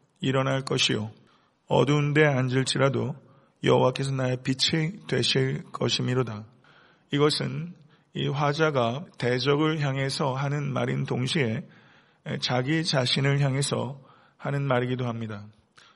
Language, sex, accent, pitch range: Korean, male, native, 125-145 Hz